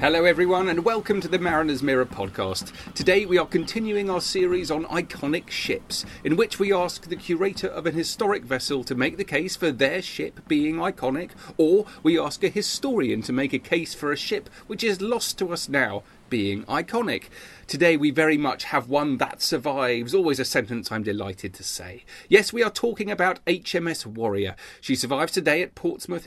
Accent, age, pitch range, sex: British, 40-59, 125-190 Hz, male